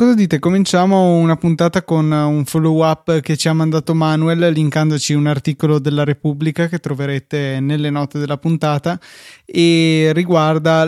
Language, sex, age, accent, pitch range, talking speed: Italian, male, 20-39, native, 150-170 Hz, 145 wpm